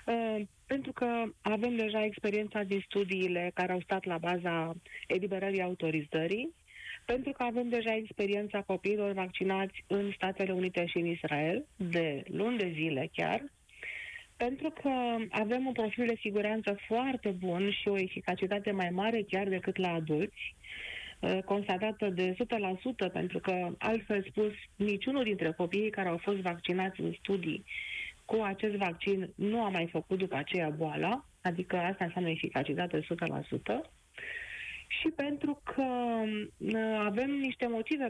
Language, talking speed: Romanian, 135 wpm